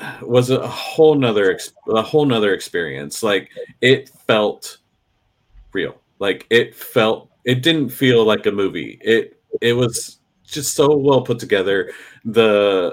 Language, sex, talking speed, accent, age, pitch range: English, male, 140 wpm, American, 30-49, 105-140 Hz